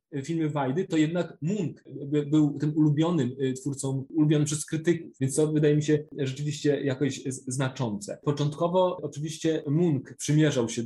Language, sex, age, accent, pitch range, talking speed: Polish, male, 20-39, native, 140-160 Hz, 140 wpm